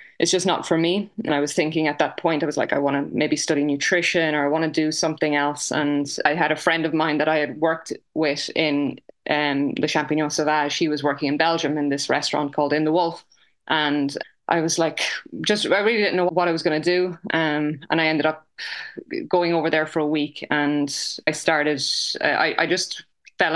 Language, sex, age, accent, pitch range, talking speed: English, female, 20-39, Irish, 150-170 Hz, 230 wpm